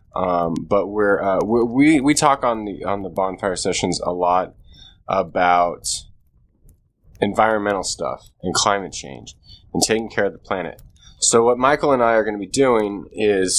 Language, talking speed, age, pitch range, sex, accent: English, 170 wpm, 20-39, 90-105 Hz, male, American